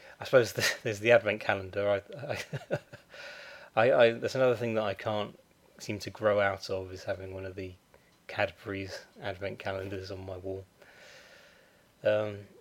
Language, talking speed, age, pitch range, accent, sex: English, 155 wpm, 20-39, 95-120 Hz, British, male